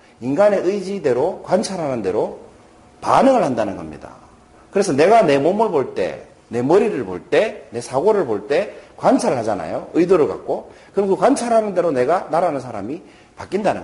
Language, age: Korean, 40-59